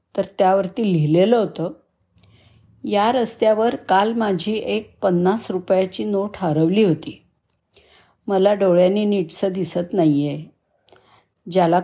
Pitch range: 165-210 Hz